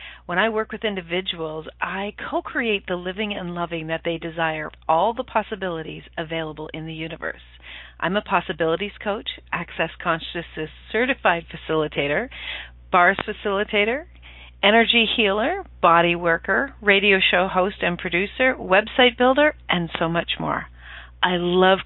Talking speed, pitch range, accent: 135 wpm, 160-210 Hz, American